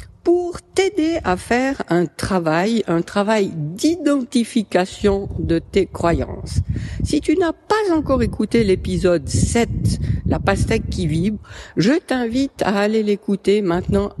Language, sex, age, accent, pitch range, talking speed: French, female, 50-69, French, 175-255 Hz, 135 wpm